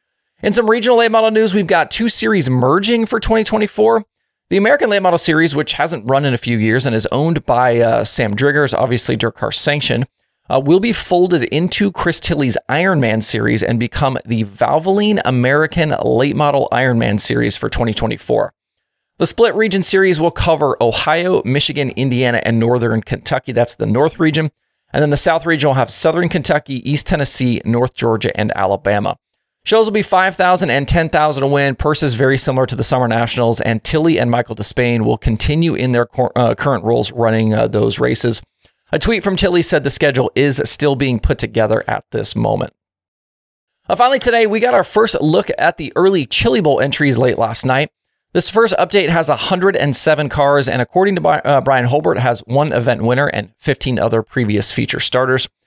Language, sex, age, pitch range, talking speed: English, male, 30-49, 120-175 Hz, 185 wpm